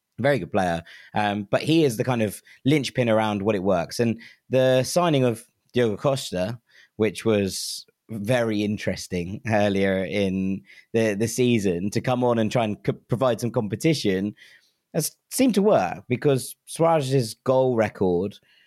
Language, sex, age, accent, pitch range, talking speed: English, male, 30-49, British, 105-125 Hz, 155 wpm